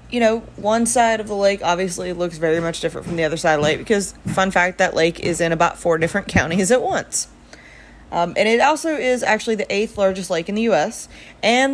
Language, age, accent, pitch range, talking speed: English, 30-49, American, 160-205 Hz, 235 wpm